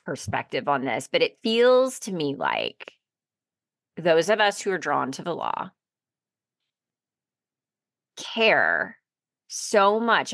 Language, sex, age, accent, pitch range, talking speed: English, female, 30-49, American, 155-215 Hz, 120 wpm